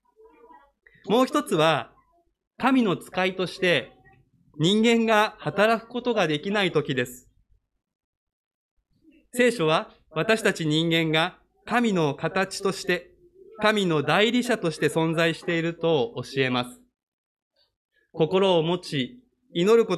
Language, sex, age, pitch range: Japanese, male, 20-39, 160-225 Hz